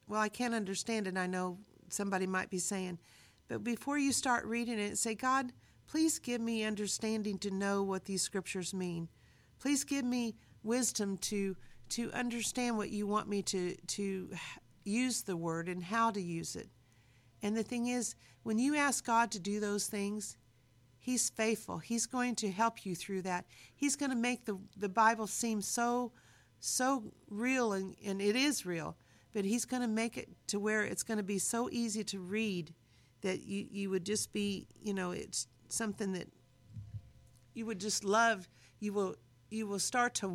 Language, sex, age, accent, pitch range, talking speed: English, female, 50-69, American, 185-230 Hz, 185 wpm